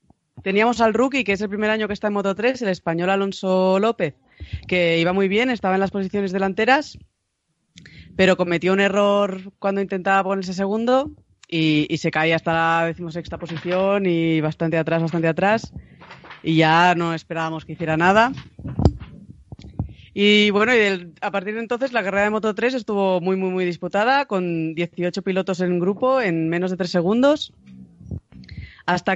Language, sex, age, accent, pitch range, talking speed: Spanish, female, 30-49, Spanish, 165-205 Hz, 170 wpm